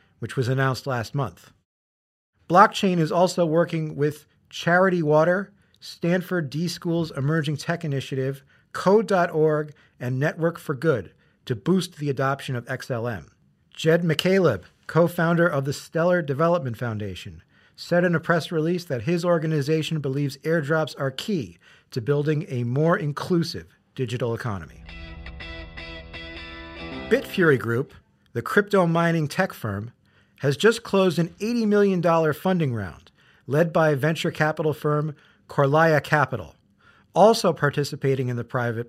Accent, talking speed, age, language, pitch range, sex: American, 125 wpm, 40-59, English, 130-170 Hz, male